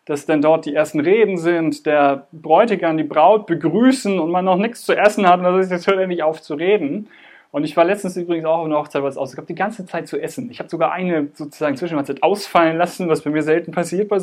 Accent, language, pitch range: German, German, 155-210 Hz